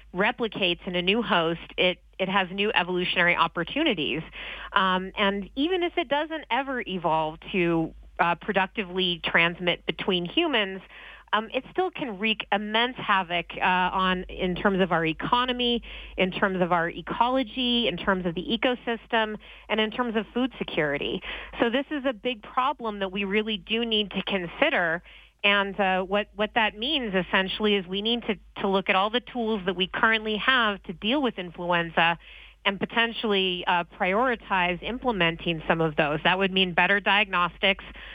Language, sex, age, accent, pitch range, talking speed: English, female, 30-49, American, 180-220 Hz, 165 wpm